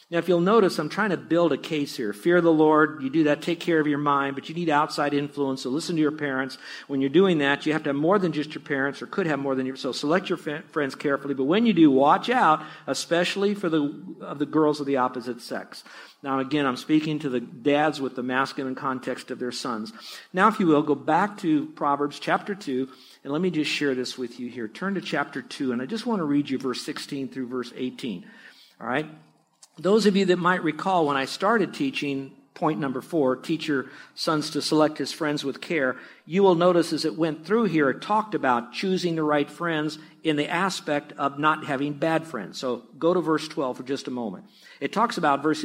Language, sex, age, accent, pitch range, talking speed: English, male, 50-69, American, 140-175 Hz, 240 wpm